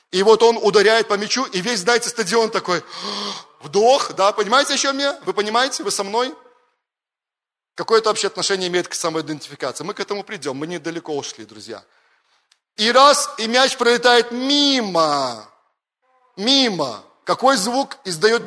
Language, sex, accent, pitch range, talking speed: Russian, male, native, 175-230 Hz, 145 wpm